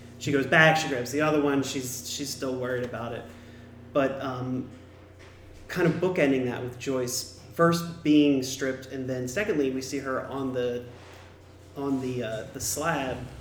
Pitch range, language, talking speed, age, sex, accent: 120-160 Hz, English, 170 wpm, 30-49, male, American